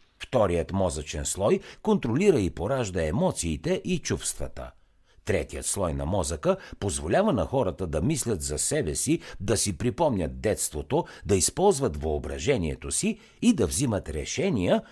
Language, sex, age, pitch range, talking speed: Bulgarian, male, 60-79, 80-130 Hz, 135 wpm